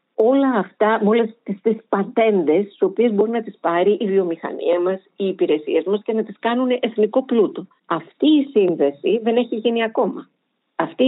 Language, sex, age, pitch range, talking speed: Greek, female, 50-69, 170-235 Hz, 175 wpm